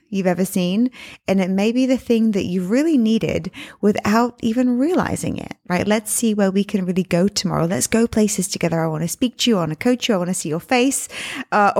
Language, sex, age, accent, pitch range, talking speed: English, female, 20-39, British, 180-245 Hz, 245 wpm